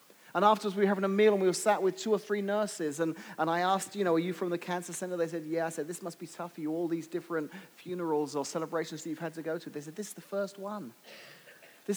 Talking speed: 295 wpm